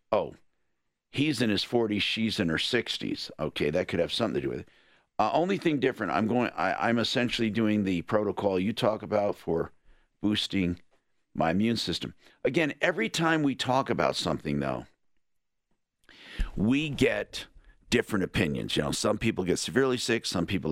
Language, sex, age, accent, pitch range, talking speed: English, male, 50-69, American, 90-120 Hz, 170 wpm